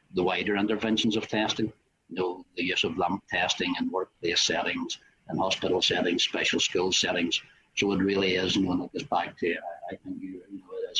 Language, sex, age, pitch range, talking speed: English, male, 60-79, 90-110 Hz, 200 wpm